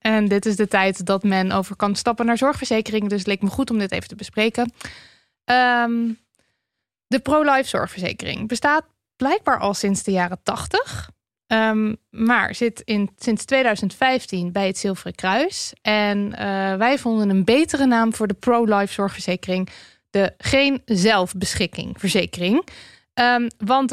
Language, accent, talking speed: Dutch, Dutch, 145 wpm